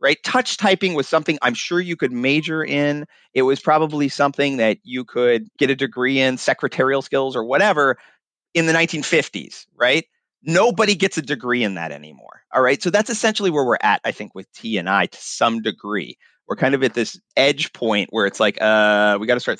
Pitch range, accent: 110-145 Hz, American